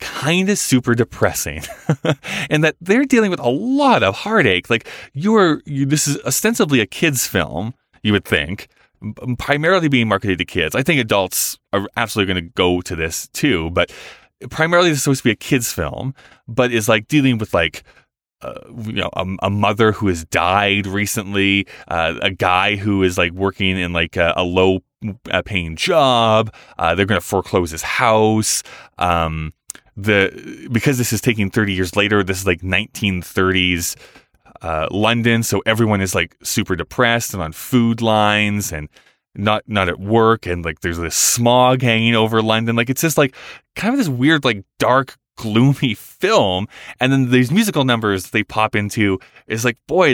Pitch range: 95-130 Hz